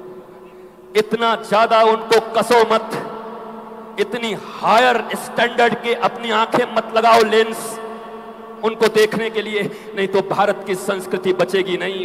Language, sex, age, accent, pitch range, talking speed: Hindi, male, 50-69, native, 185-225 Hz, 125 wpm